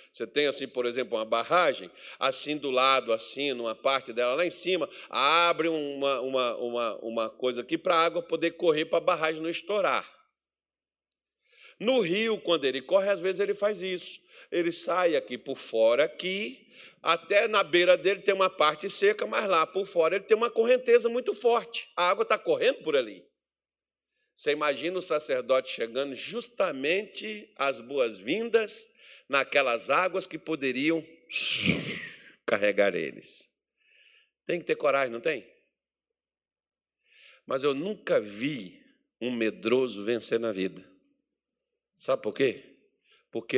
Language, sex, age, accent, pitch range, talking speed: Portuguese, male, 50-69, Brazilian, 160-265 Hz, 145 wpm